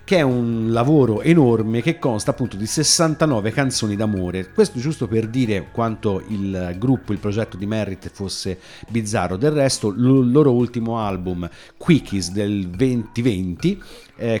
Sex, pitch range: male, 100-130 Hz